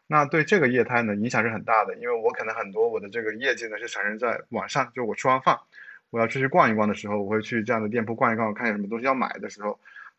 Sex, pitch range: male, 110-135 Hz